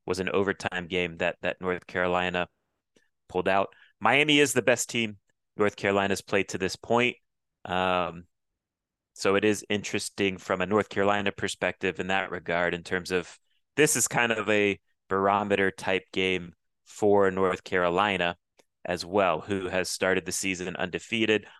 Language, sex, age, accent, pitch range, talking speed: English, male, 30-49, American, 95-110 Hz, 155 wpm